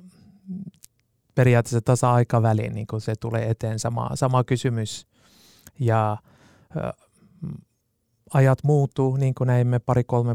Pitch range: 115-150 Hz